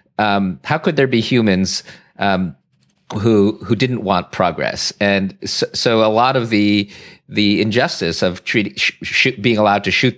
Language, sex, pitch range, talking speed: English, male, 95-110 Hz, 170 wpm